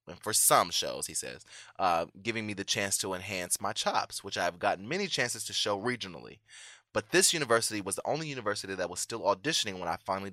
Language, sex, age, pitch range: English, male, 20-39, 95-115 Hz